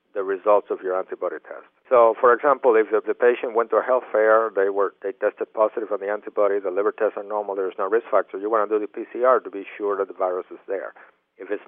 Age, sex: 50-69, male